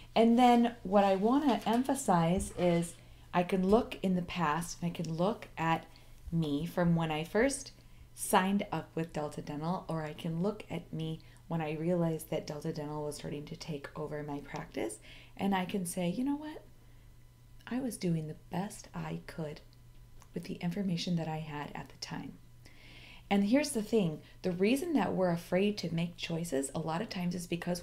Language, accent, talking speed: English, American, 190 wpm